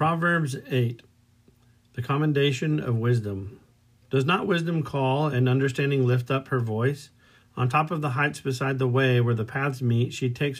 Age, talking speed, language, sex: 50-69, 170 wpm, English, male